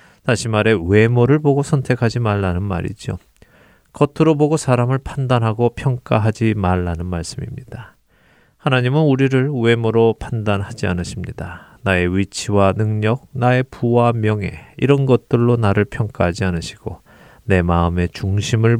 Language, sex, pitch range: Korean, male, 95-125 Hz